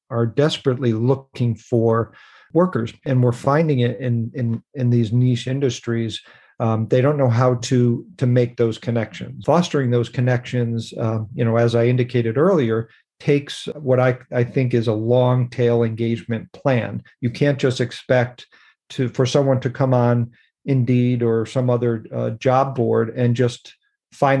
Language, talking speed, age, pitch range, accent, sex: English, 160 wpm, 50-69, 120-130 Hz, American, male